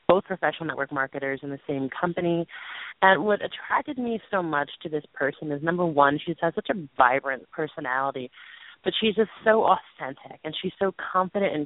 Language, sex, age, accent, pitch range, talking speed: English, female, 30-49, American, 145-175 Hz, 180 wpm